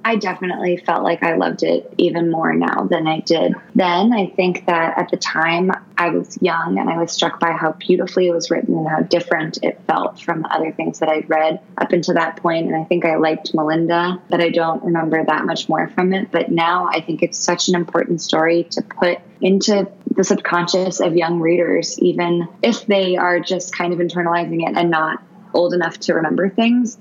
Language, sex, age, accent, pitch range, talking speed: English, female, 20-39, American, 165-190 Hz, 215 wpm